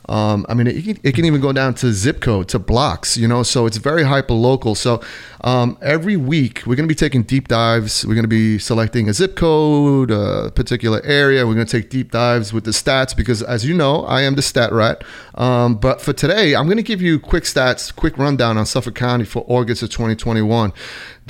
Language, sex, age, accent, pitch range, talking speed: English, male, 30-49, American, 115-140 Hz, 230 wpm